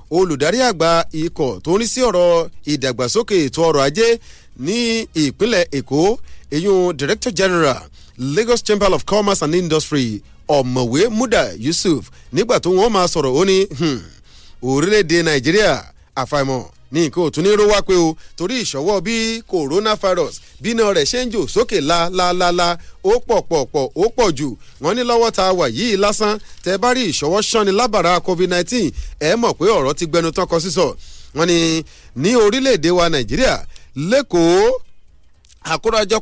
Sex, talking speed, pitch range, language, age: male, 130 wpm, 160-220 Hz, English, 40-59